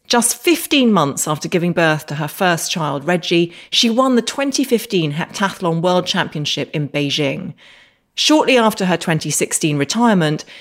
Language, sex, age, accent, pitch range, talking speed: English, female, 30-49, British, 155-225 Hz, 140 wpm